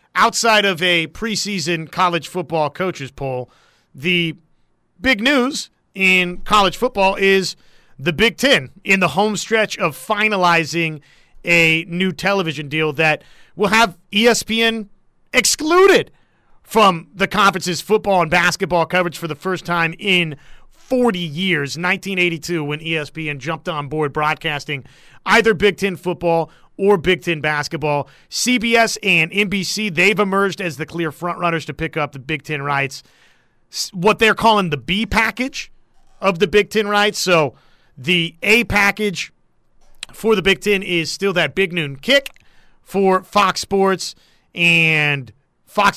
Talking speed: 145 wpm